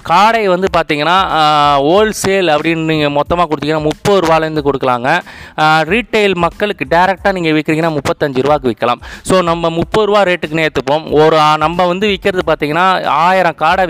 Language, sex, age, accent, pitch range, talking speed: Tamil, male, 30-49, native, 145-185 Hz, 140 wpm